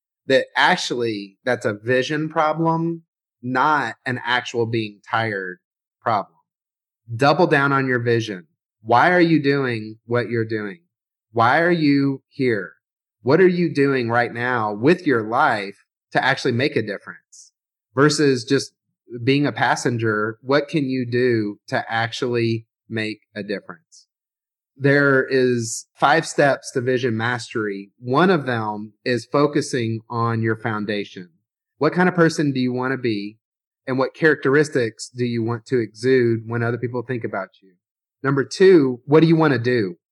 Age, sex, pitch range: 30-49, male, 115-140 Hz